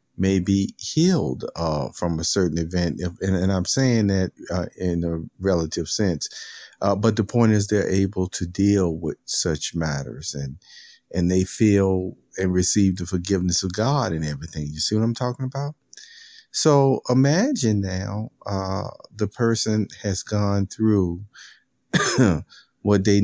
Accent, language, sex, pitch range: American, English, male, 90-110 Hz